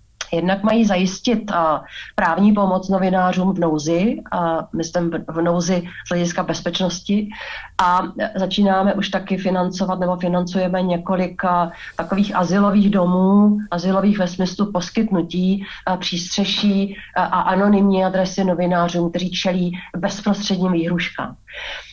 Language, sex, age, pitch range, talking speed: Slovak, female, 40-59, 180-210 Hz, 105 wpm